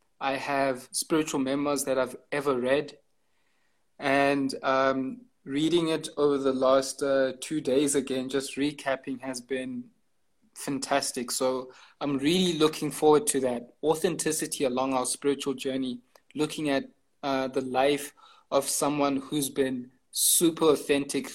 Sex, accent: male, South African